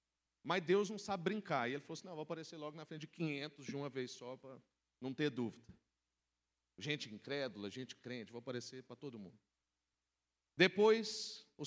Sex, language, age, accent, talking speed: male, Portuguese, 40-59, Brazilian, 185 wpm